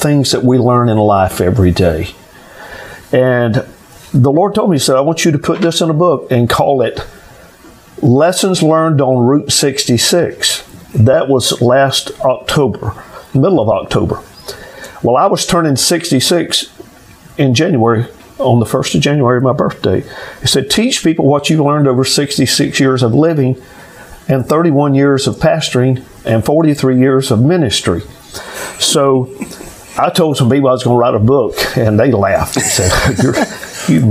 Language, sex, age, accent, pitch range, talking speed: English, male, 50-69, American, 120-160 Hz, 165 wpm